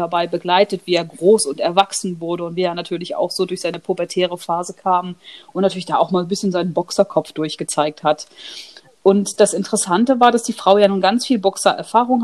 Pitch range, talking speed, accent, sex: 185-215 Hz, 205 wpm, German, female